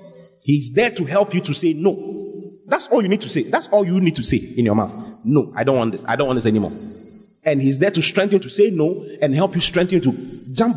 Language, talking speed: English, 275 wpm